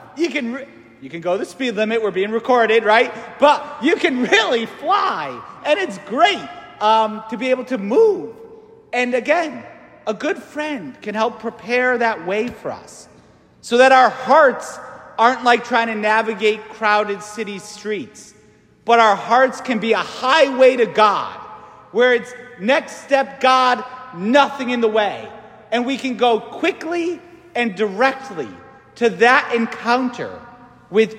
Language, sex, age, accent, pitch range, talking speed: English, male, 40-59, American, 220-265 Hz, 155 wpm